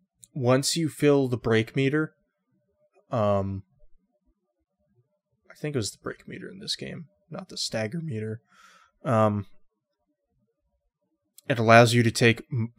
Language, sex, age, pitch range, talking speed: English, male, 20-39, 105-135 Hz, 125 wpm